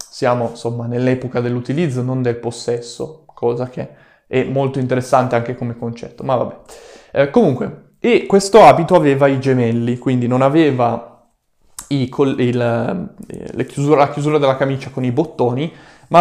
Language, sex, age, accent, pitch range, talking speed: Italian, male, 20-39, native, 125-160 Hz, 150 wpm